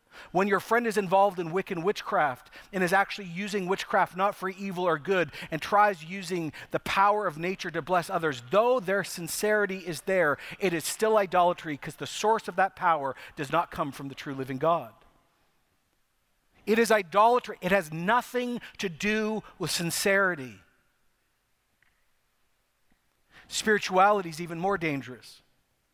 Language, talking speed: English, 155 wpm